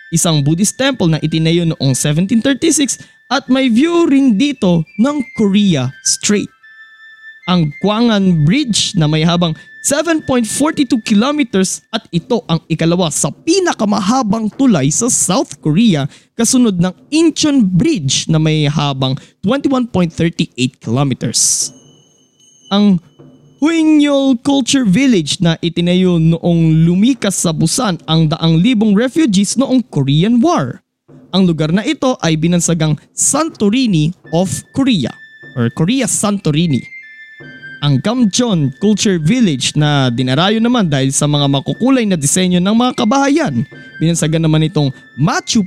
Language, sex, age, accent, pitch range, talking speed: Filipino, male, 20-39, native, 160-255 Hz, 120 wpm